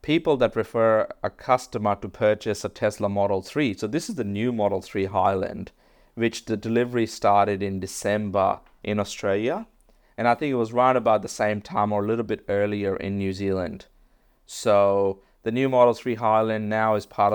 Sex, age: male, 30-49